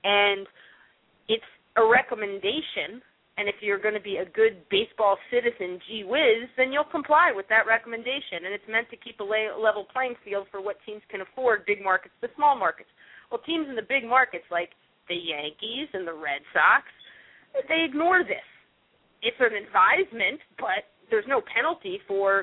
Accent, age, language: American, 30-49, English